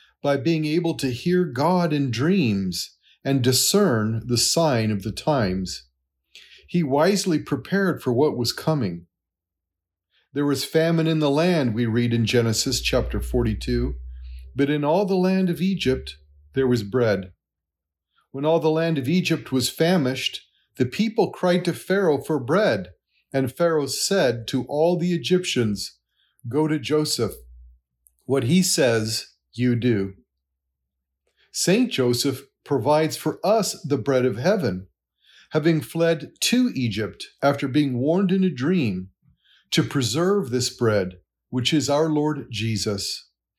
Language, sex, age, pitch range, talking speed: English, male, 40-59, 100-160 Hz, 140 wpm